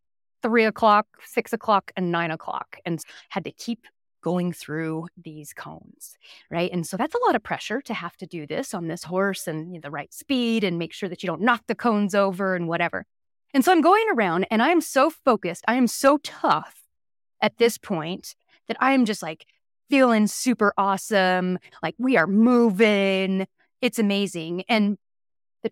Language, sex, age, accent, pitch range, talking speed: English, female, 30-49, American, 190-295 Hz, 185 wpm